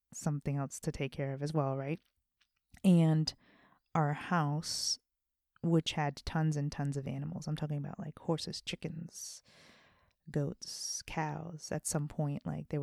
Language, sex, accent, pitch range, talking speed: English, female, American, 145-170 Hz, 150 wpm